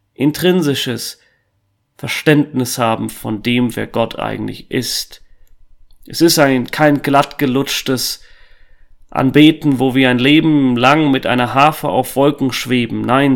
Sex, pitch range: male, 105-145 Hz